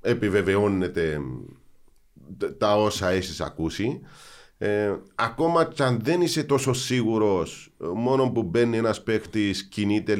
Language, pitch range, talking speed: Greek, 95-130 Hz, 110 wpm